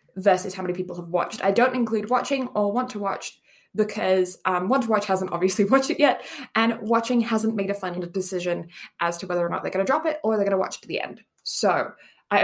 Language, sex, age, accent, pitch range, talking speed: English, female, 20-39, British, 190-255 Hz, 250 wpm